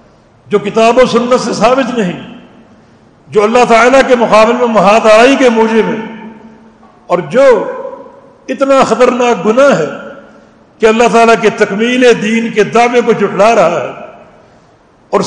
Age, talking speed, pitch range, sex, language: 60-79, 145 wpm, 200-250 Hz, male, English